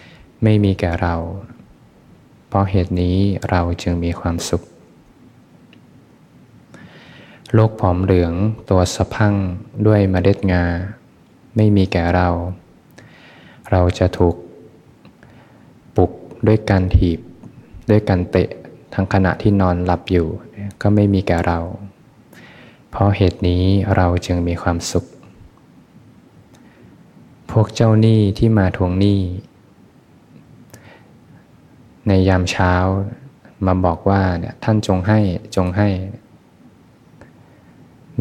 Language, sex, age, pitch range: Thai, male, 20-39, 90-100 Hz